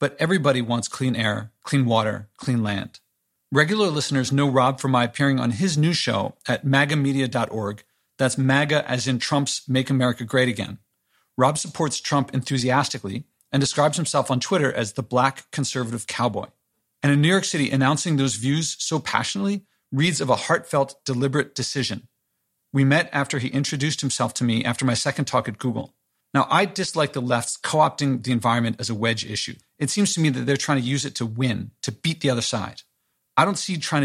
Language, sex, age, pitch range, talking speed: English, male, 40-59, 120-145 Hz, 190 wpm